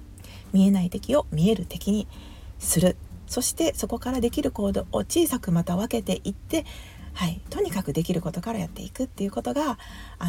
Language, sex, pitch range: Japanese, female, 160-220 Hz